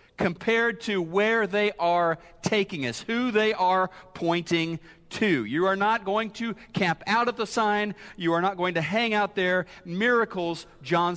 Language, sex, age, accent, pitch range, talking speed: English, male, 40-59, American, 160-215 Hz, 170 wpm